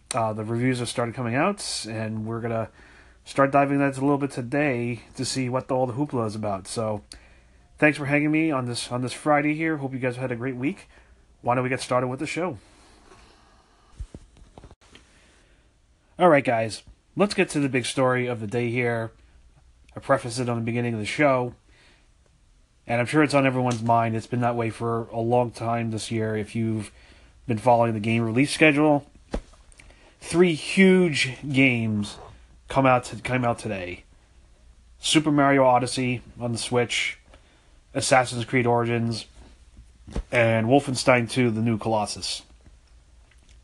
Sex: male